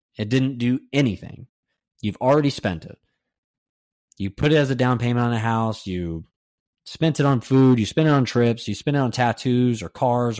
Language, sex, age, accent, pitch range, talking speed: English, male, 20-39, American, 110-135 Hz, 200 wpm